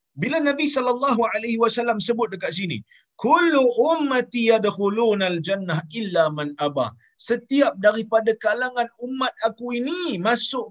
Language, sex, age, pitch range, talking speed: Malayalam, male, 50-69, 185-265 Hz, 125 wpm